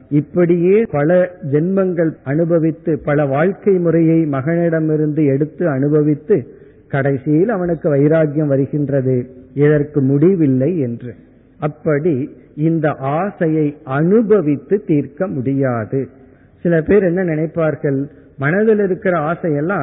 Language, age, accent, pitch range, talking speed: Tamil, 50-69, native, 140-180 Hz, 90 wpm